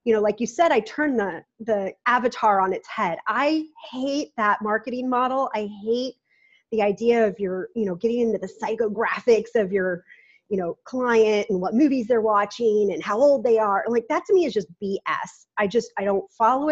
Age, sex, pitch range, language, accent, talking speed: 30-49, female, 200-255 Hz, English, American, 210 wpm